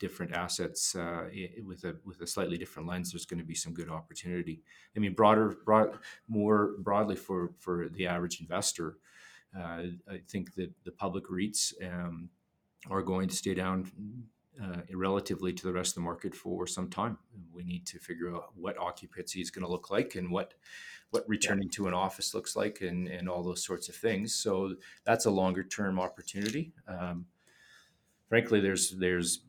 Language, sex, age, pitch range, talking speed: English, male, 30-49, 90-95 Hz, 185 wpm